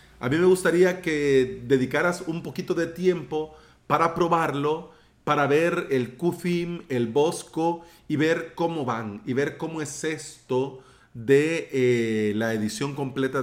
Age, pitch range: 40-59, 130-175 Hz